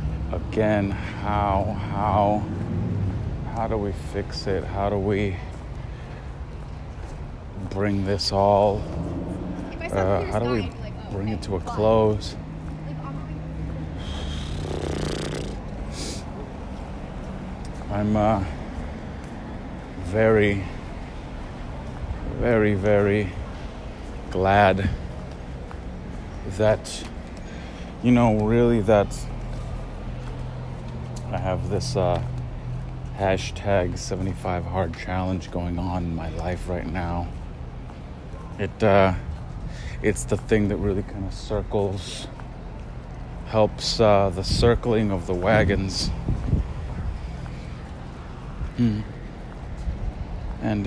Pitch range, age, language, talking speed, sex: 80-105 Hz, 30-49, English, 80 wpm, male